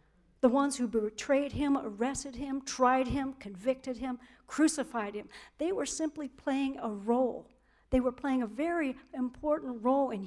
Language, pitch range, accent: English, 220-265 Hz, American